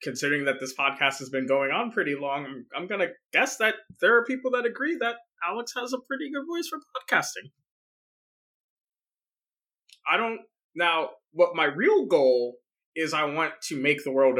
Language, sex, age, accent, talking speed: English, male, 20-39, American, 185 wpm